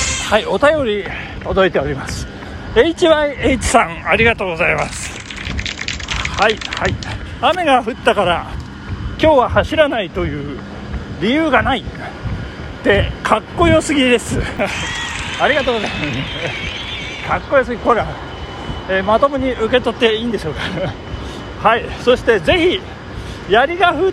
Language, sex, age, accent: Japanese, male, 40-59, native